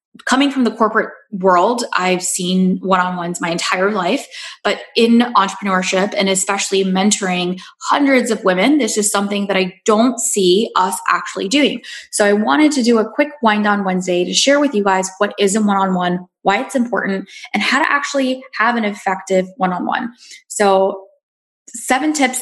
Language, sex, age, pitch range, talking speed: English, female, 10-29, 190-235 Hz, 170 wpm